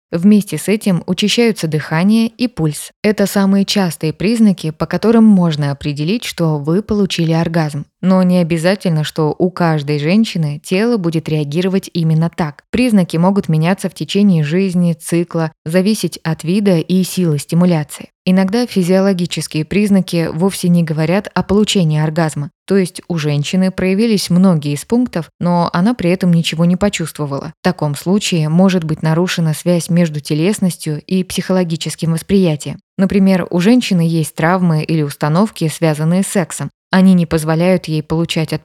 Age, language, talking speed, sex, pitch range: 20-39, Russian, 150 wpm, female, 160-195 Hz